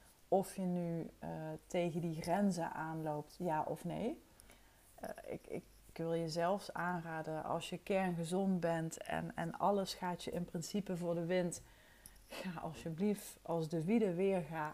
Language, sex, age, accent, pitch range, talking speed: Dutch, female, 30-49, Dutch, 160-185 Hz, 160 wpm